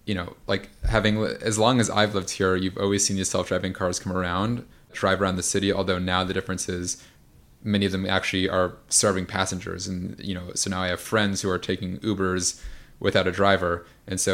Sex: male